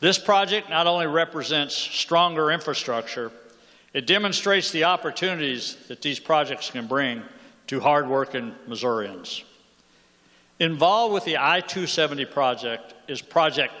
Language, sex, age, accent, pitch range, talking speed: English, male, 60-79, American, 140-180 Hz, 115 wpm